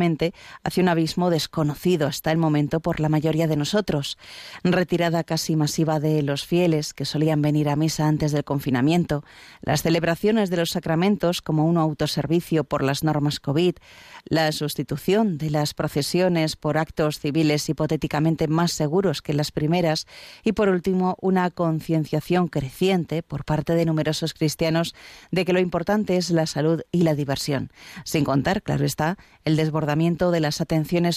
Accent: Spanish